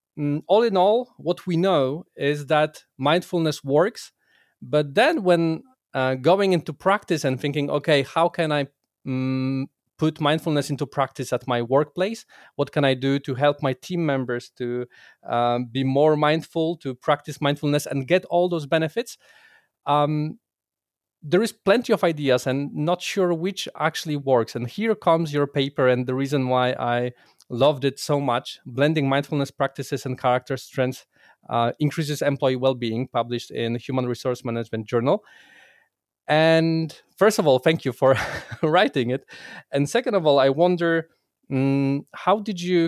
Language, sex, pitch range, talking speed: English, male, 130-165 Hz, 160 wpm